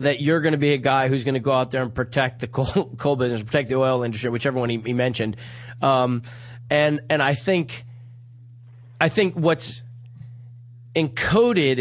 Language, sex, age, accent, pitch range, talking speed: English, male, 30-49, American, 120-150 Hz, 190 wpm